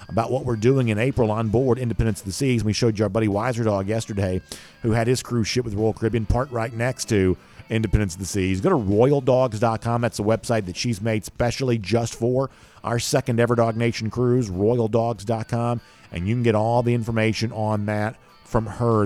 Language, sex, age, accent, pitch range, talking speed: English, male, 50-69, American, 100-125 Hz, 210 wpm